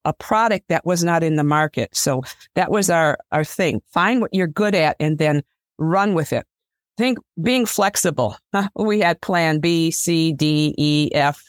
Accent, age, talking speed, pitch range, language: American, 50-69, 185 wpm, 150-185 Hz, English